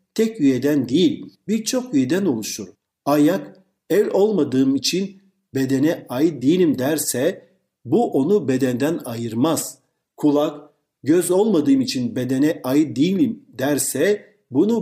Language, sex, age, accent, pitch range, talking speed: Turkish, male, 50-69, native, 130-220 Hz, 110 wpm